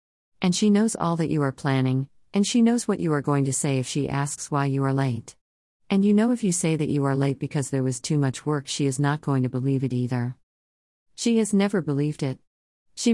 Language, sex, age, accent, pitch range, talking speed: English, female, 40-59, American, 130-180 Hz, 245 wpm